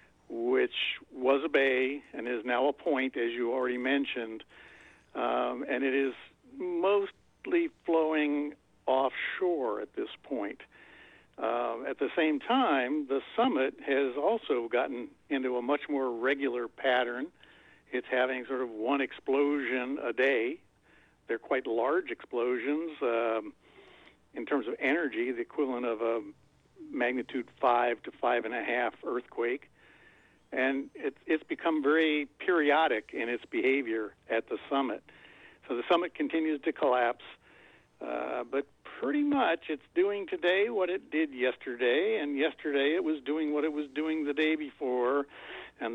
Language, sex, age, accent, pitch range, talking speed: English, male, 60-79, American, 125-165 Hz, 140 wpm